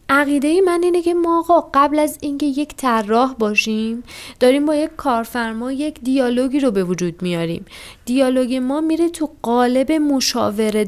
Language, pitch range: Persian, 190-275 Hz